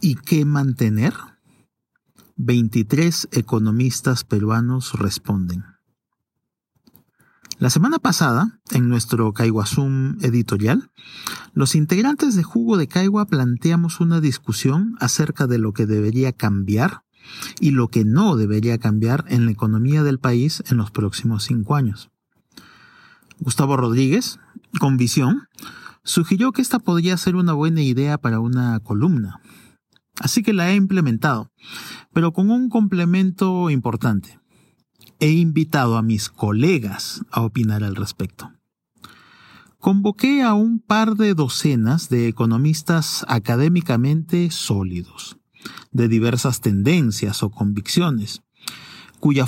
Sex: male